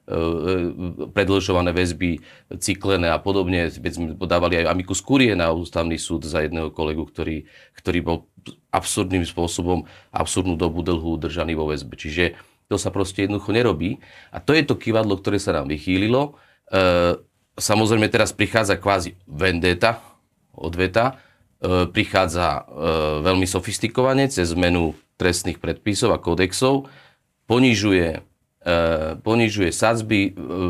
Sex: male